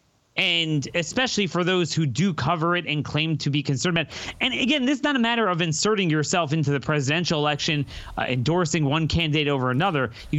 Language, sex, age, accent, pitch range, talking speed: English, male, 30-49, American, 140-190 Hz, 200 wpm